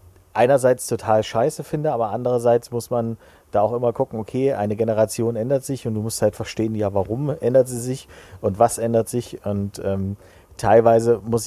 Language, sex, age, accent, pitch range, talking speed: German, male, 40-59, German, 100-120 Hz, 185 wpm